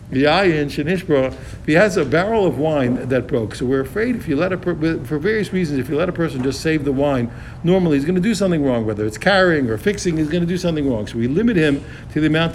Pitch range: 130-180 Hz